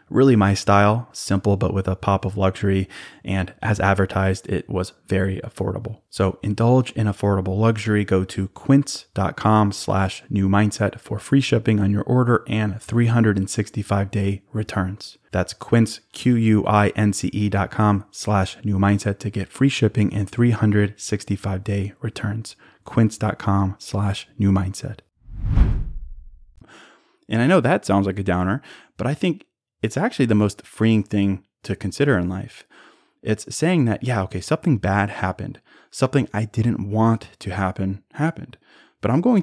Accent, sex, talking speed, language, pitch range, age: American, male, 145 wpm, English, 100-115 Hz, 20-39